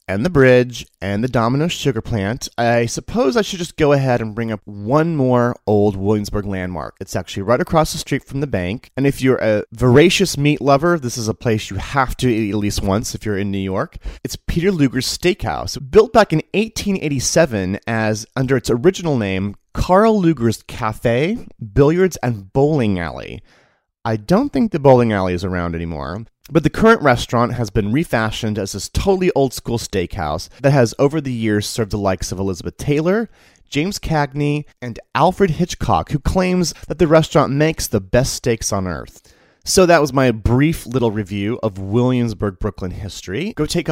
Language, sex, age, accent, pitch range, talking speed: English, male, 30-49, American, 105-145 Hz, 185 wpm